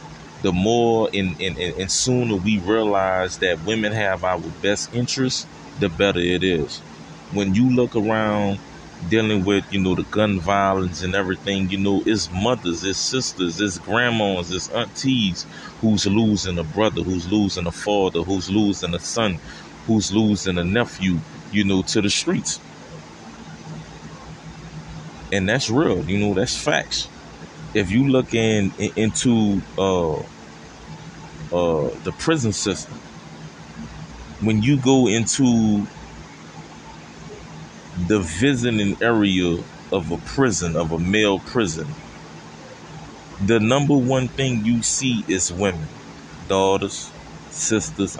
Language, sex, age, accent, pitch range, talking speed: English, male, 30-49, American, 95-110 Hz, 130 wpm